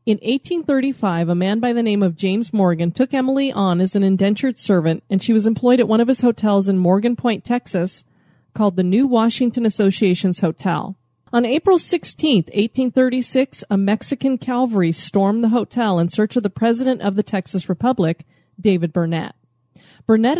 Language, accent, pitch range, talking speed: English, American, 190-250 Hz, 170 wpm